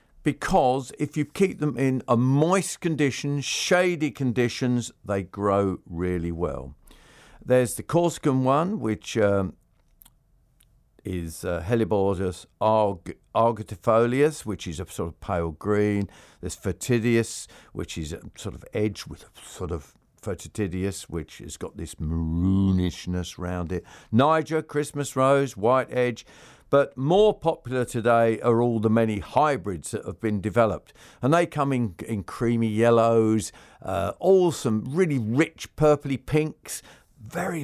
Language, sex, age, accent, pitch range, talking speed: English, male, 50-69, British, 100-145 Hz, 135 wpm